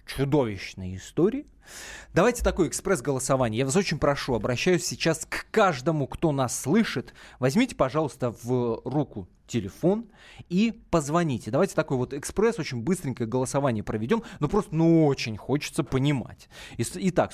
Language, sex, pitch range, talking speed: Russian, male, 115-170 Hz, 130 wpm